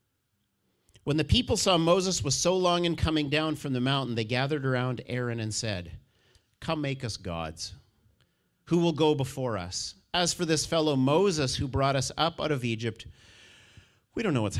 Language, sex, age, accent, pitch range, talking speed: English, male, 50-69, American, 105-155 Hz, 185 wpm